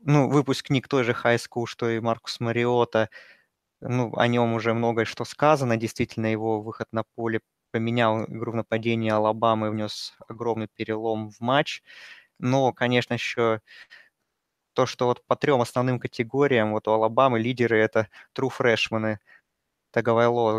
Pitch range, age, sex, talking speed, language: 110-130 Hz, 20-39, male, 145 wpm, Russian